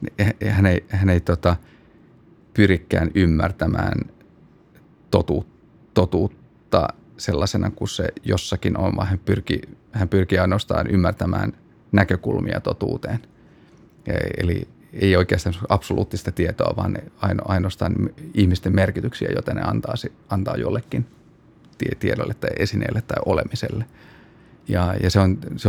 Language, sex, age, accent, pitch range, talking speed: Finnish, male, 30-49, native, 95-110 Hz, 110 wpm